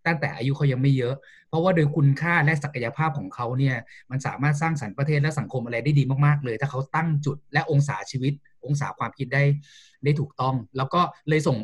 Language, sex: Thai, male